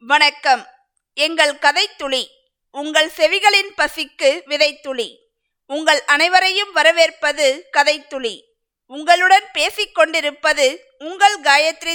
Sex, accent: female, native